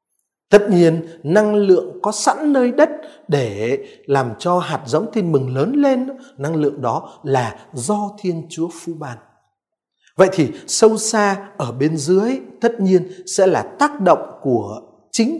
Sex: male